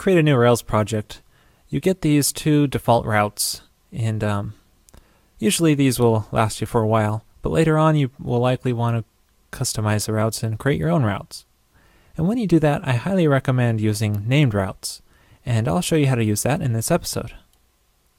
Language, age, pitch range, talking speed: English, 20-39, 110-140 Hz, 195 wpm